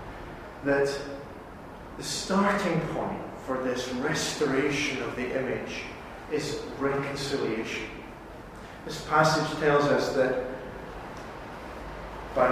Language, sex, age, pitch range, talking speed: English, male, 40-59, 125-160 Hz, 85 wpm